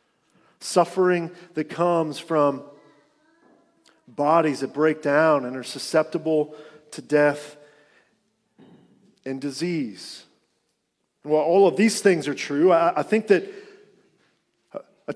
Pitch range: 150-195 Hz